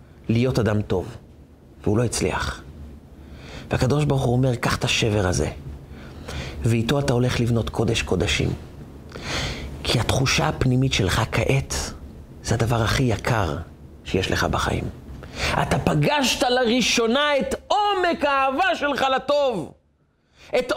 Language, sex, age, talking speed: Hebrew, male, 40-59, 120 wpm